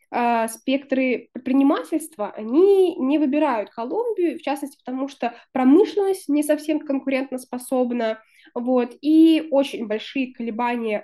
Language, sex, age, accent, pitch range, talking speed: Russian, female, 20-39, native, 220-285 Hz, 110 wpm